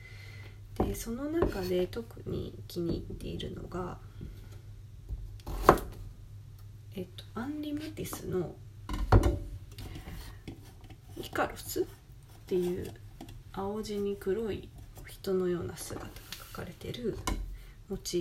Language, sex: Japanese, female